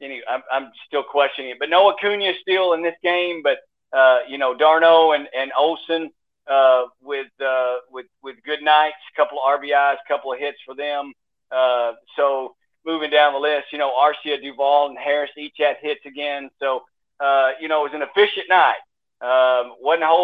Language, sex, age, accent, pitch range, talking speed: English, male, 50-69, American, 135-160 Hz, 200 wpm